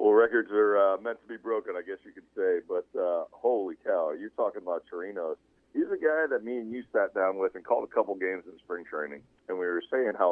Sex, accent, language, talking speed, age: male, American, English, 255 wpm, 40-59